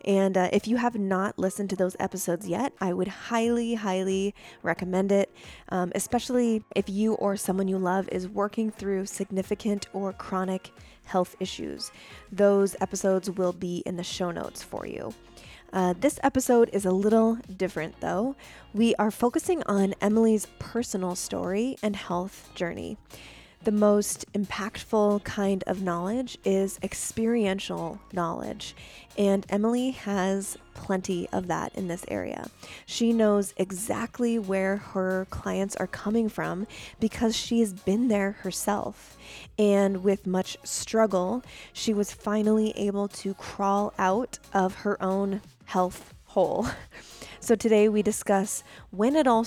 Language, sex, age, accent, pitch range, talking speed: English, female, 20-39, American, 185-215 Hz, 140 wpm